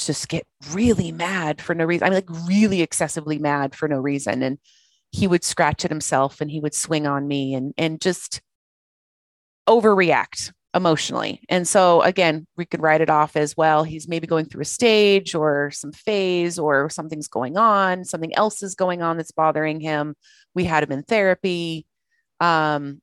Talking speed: 180 wpm